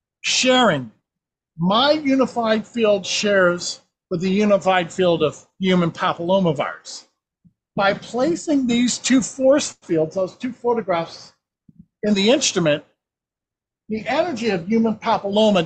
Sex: male